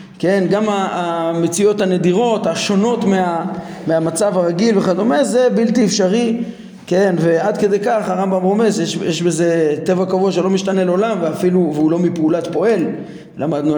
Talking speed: 135 wpm